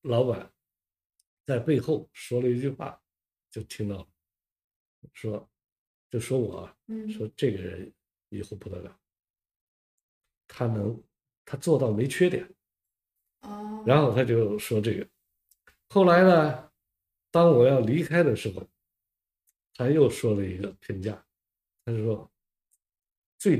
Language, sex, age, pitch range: Chinese, male, 50-69, 105-155 Hz